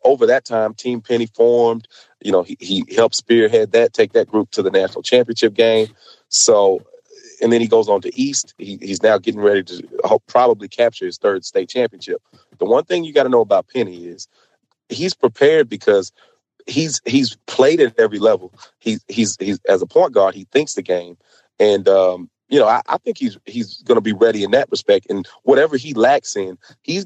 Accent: American